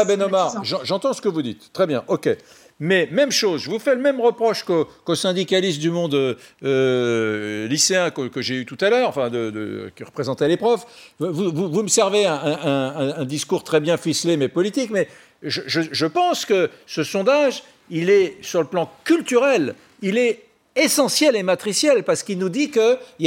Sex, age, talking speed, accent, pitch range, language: male, 60-79, 205 wpm, French, 165-235 Hz, French